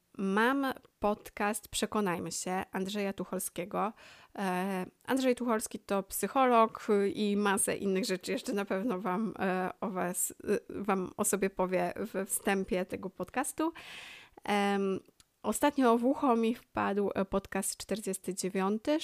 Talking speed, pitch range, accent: 105 wpm, 185-225 Hz, native